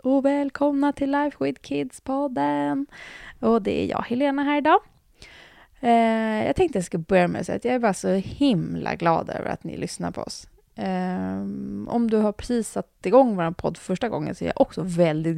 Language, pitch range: English, 160-250 Hz